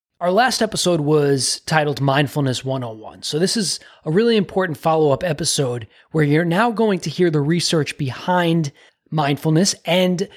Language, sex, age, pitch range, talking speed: English, male, 20-39, 135-170 Hz, 150 wpm